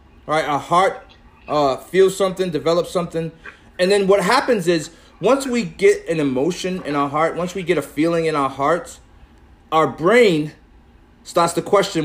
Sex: male